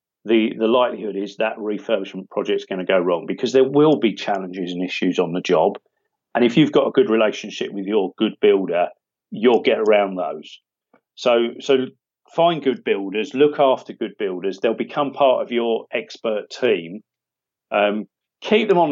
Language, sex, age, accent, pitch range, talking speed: English, male, 40-59, British, 95-135 Hz, 180 wpm